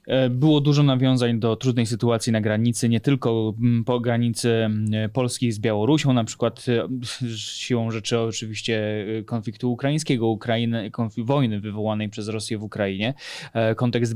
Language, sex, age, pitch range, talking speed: Polish, male, 20-39, 115-130 Hz, 125 wpm